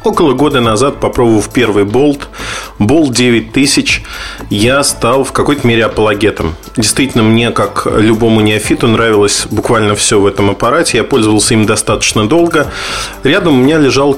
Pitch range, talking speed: 110-145 Hz, 145 wpm